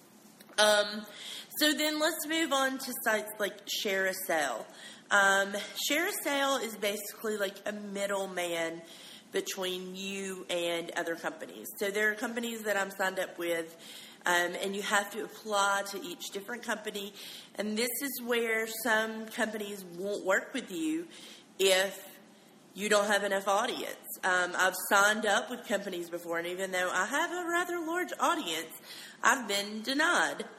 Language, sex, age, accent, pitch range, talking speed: English, female, 30-49, American, 180-230 Hz, 150 wpm